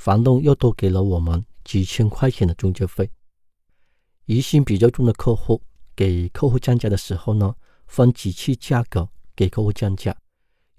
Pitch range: 90-120 Hz